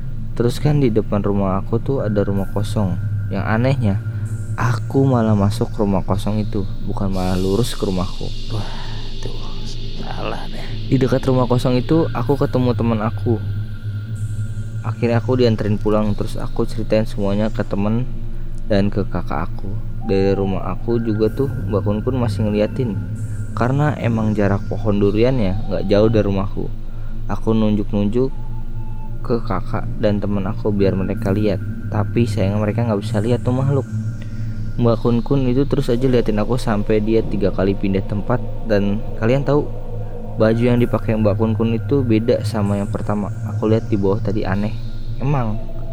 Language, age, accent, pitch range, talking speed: Indonesian, 20-39, native, 105-115 Hz, 160 wpm